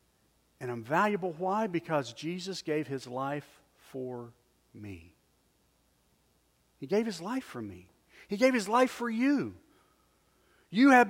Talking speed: 135 wpm